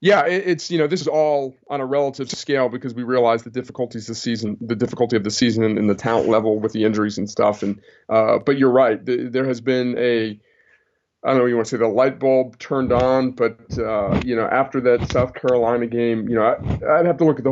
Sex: male